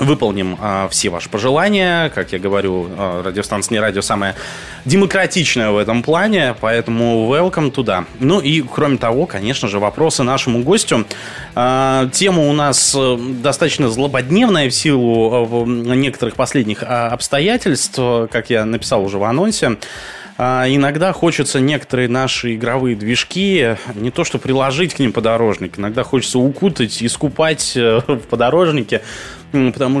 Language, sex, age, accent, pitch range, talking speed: Russian, male, 20-39, native, 110-145 Hz, 130 wpm